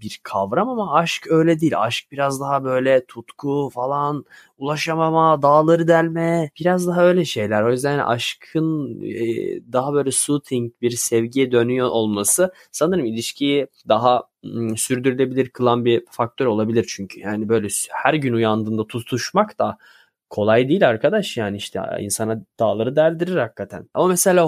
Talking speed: 135 wpm